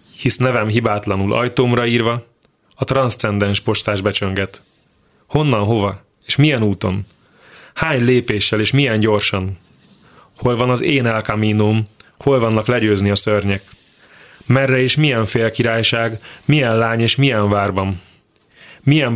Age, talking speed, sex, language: 20-39, 120 wpm, male, Hungarian